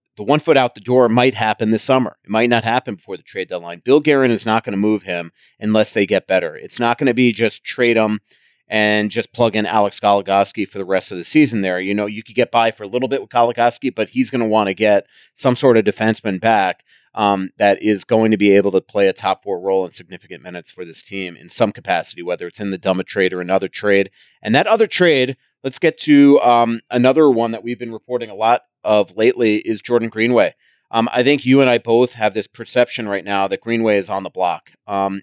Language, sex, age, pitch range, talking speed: English, male, 30-49, 100-120 Hz, 250 wpm